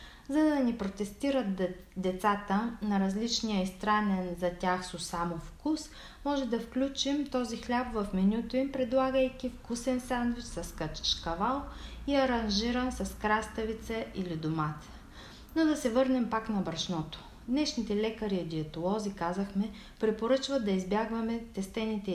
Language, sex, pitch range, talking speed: Bulgarian, female, 175-245 Hz, 135 wpm